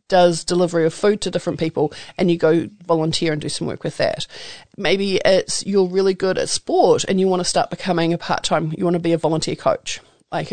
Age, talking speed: 40-59, 230 wpm